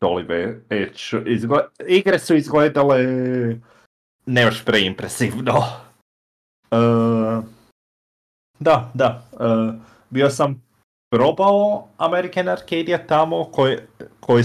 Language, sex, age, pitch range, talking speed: Croatian, male, 30-49, 105-130 Hz, 80 wpm